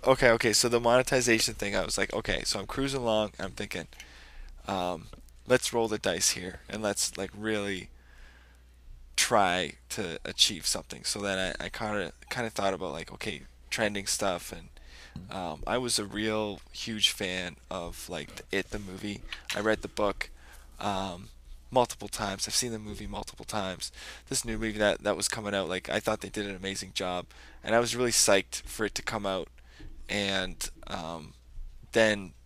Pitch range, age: 75-115 Hz, 10-29